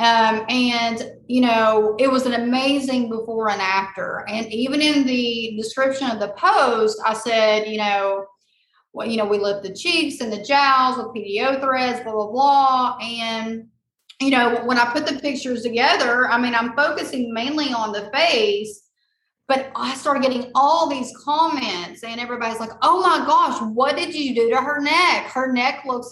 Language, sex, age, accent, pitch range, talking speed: English, female, 30-49, American, 230-300 Hz, 180 wpm